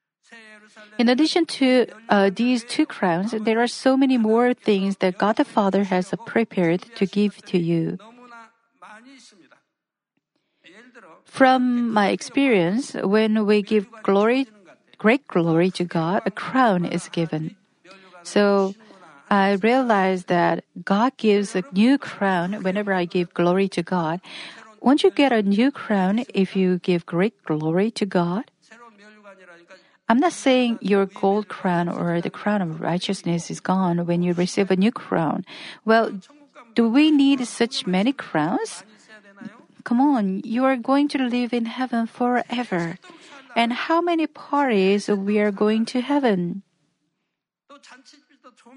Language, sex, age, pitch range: Korean, female, 50-69, 185-245 Hz